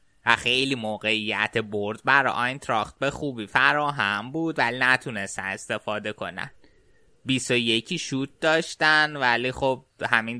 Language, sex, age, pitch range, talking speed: Persian, male, 20-39, 115-135 Hz, 125 wpm